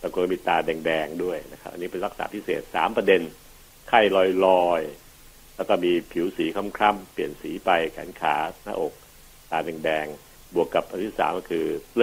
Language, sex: Thai, male